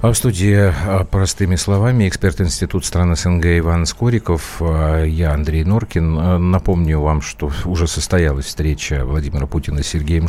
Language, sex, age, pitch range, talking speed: Russian, male, 50-69, 75-90 Hz, 140 wpm